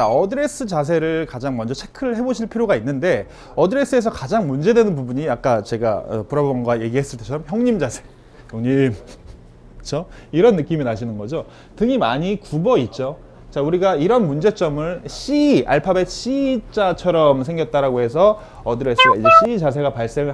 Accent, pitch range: native, 150-220 Hz